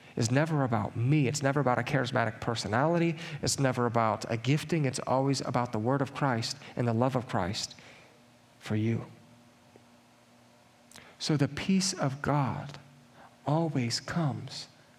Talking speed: 145 wpm